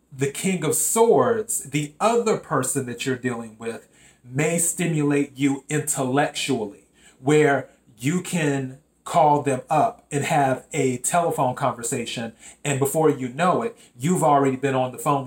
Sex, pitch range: male, 130-155 Hz